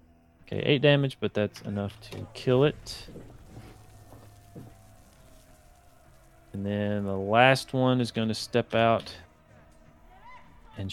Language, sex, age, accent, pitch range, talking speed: English, male, 30-49, American, 100-115 Hz, 110 wpm